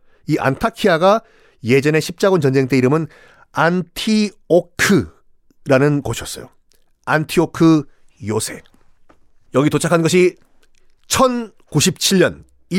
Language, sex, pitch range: Korean, male, 145-230 Hz